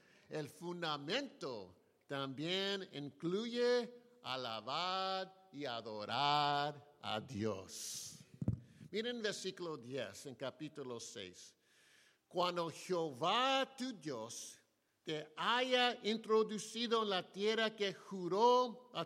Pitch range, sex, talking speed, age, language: 160-225 Hz, male, 85 wpm, 50-69, English